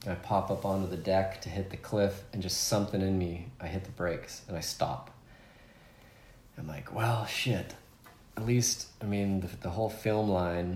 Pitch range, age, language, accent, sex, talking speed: 90-105 Hz, 30-49, English, American, male, 195 wpm